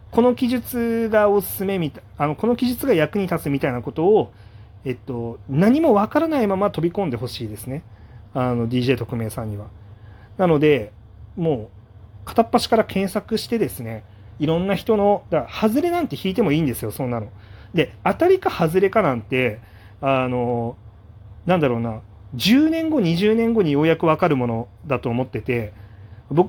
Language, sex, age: Japanese, male, 40-59